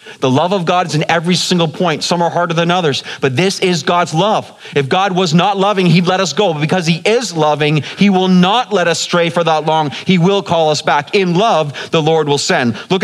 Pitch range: 120-165 Hz